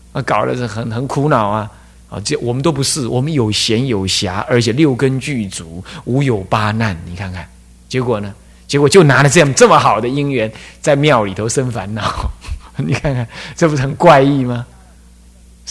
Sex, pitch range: male, 90-145 Hz